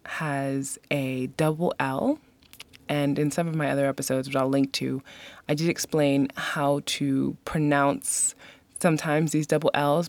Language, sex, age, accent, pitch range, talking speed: English, female, 20-39, American, 140-185 Hz, 150 wpm